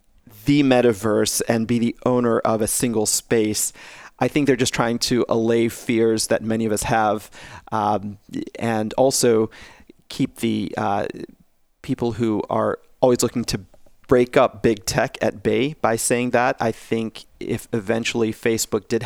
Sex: male